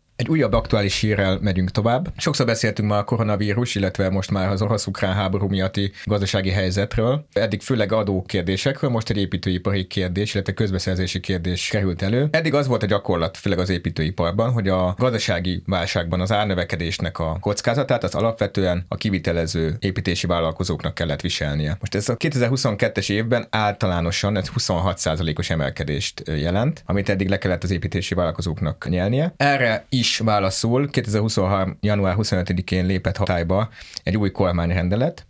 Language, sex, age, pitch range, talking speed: Hungarian, male, 30-49, 90-110 Hz, 145 wpm